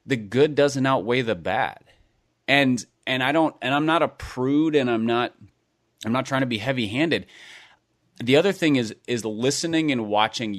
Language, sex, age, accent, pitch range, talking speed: English, male, 30-49, American, 115-140 Hz, 180 wpm